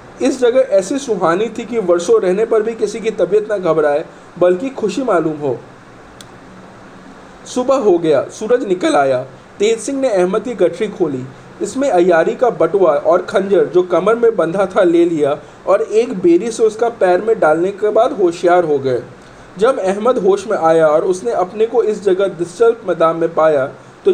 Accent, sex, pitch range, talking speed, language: native, male, 180-250 Hz, 185 wpm, Hindi